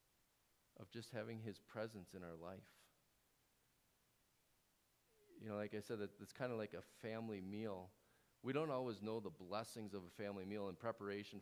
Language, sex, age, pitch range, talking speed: English, male, 40-59, 105-150 Hz, 175 wpm